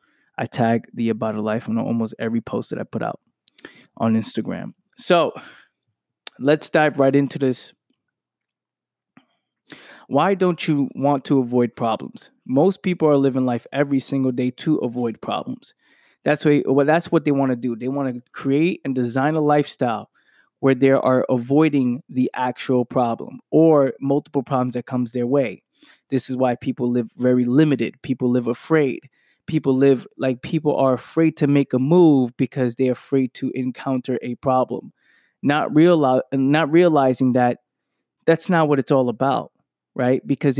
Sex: male